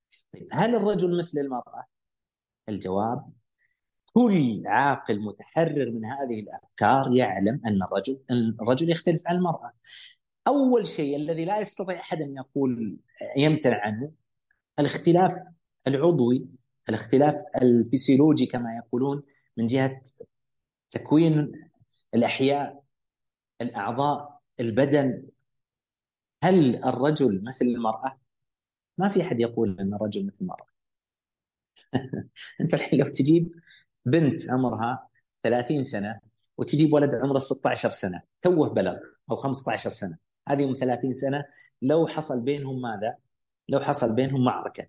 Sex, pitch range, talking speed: male, 120-155 Hz, 110 wpm